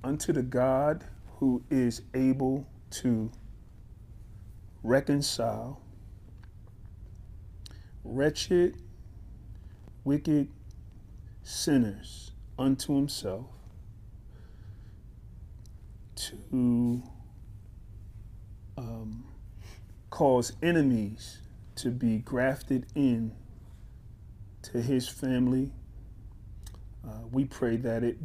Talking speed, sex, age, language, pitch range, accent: 60 wpm, male, 40-59, English, 105-125 Hz, American